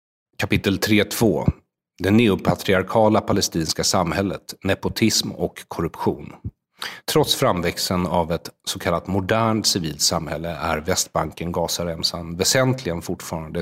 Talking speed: 95 wpm